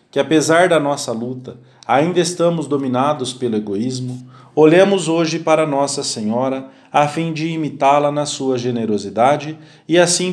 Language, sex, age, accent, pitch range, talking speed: English, male, 40-59, Brazilian, 125-165 Hz, 140 wpm